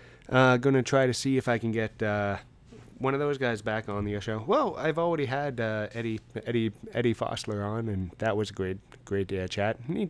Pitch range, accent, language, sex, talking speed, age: 105-130 Hz, American, English, male, 220 wpm, 20-39